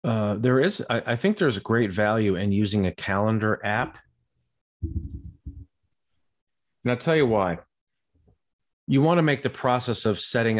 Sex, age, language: male, 40-59, English